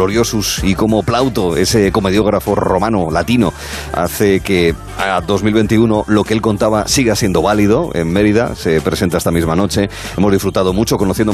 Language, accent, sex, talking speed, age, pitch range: Spanish, Spanish, male, 155 wpm, 40-59, 90-110 Hz